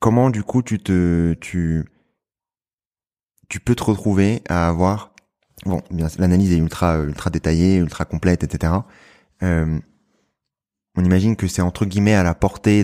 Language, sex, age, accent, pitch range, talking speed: French, male, 20-39, French, 80-100 Hz, 145 wpm